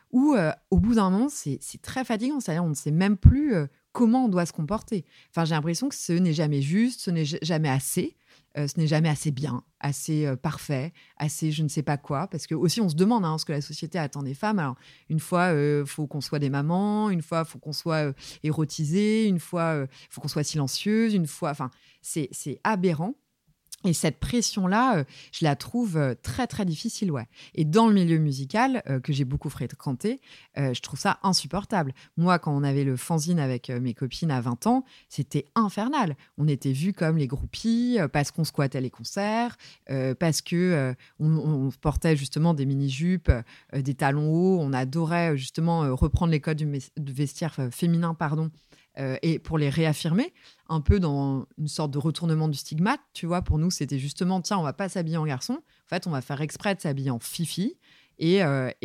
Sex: female